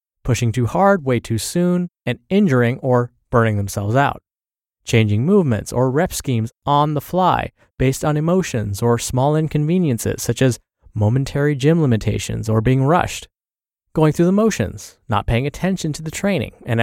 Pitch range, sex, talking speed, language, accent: 115-155 Hz, male, 160 wpm, English, American